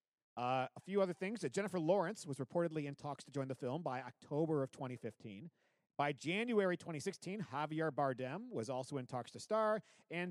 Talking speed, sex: 185 wpm, male